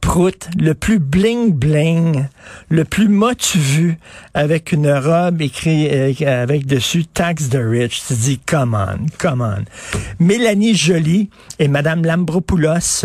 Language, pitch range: French, 135-185 Hz